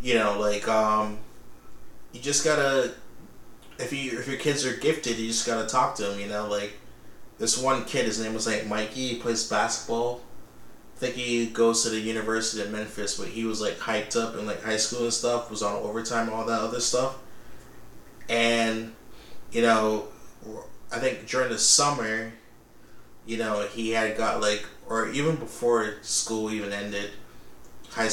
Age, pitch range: 20-39, 110-115 Hz